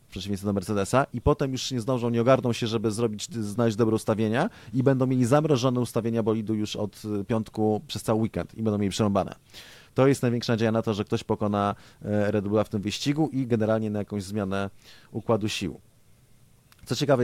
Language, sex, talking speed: Polish, male, 190 wpm